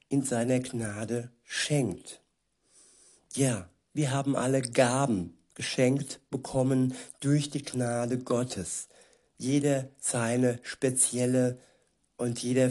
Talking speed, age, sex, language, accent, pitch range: 95 wpm, 60-79, male, German, German, 120-135 Hz